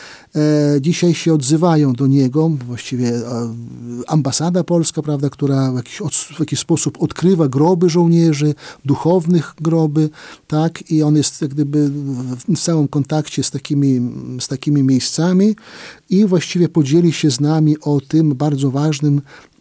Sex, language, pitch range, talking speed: male, Polish, 140-165 Hz, 130 wpm